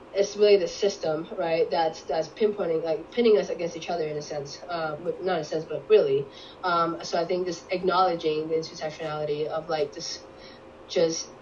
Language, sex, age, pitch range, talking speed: English, female, 10-29, 160-185 Hz, 195 wpm